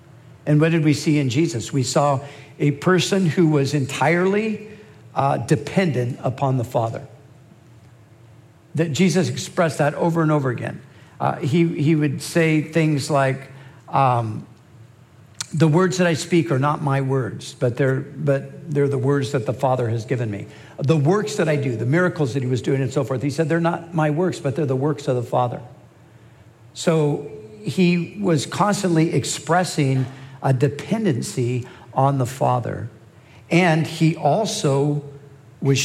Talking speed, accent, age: 160 wpm, American, 60-79